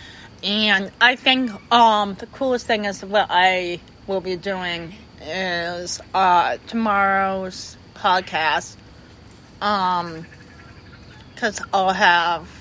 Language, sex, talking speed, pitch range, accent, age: English, female, 100 wpm, 180-230 Hz, American, 30-49